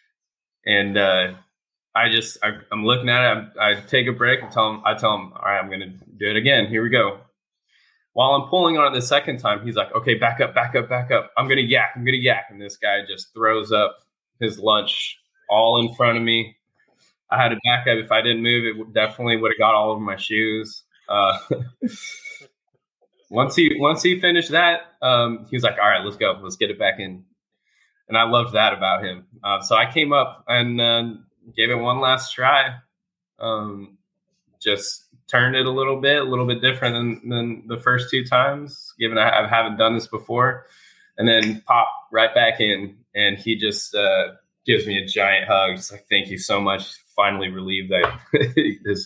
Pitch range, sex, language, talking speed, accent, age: 105-130 Hz, male, English, 210 wpm, American, 20-39